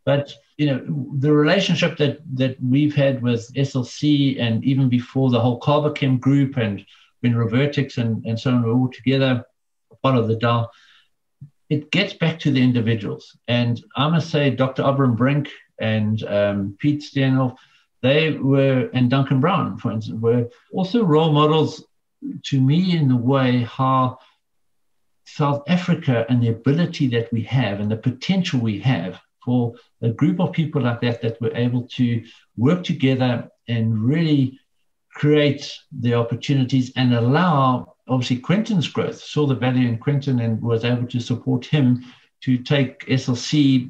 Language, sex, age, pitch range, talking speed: English, male, 60-79, 120-145 Hz, 155 wpm